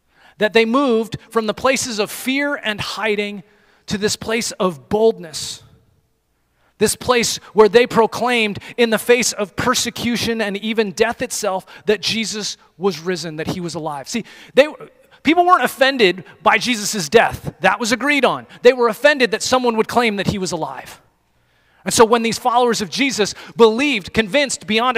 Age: 30-49